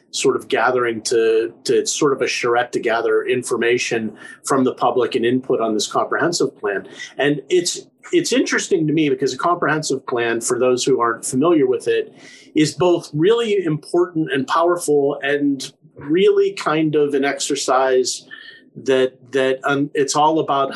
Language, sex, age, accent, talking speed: English, male, 40-59, American, 165 wpm